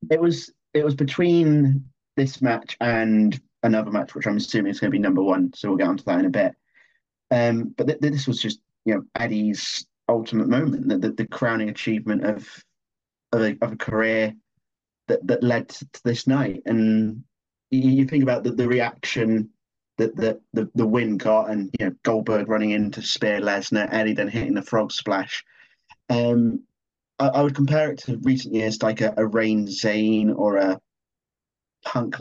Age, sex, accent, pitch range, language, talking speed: 30-49, male, British, 110-130 Hz, English, 185 wpm